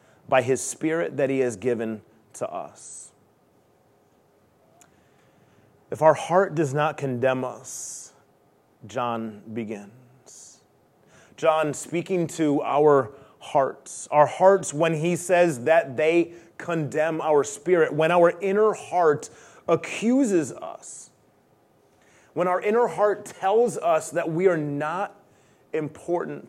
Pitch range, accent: 135-175 Hz, American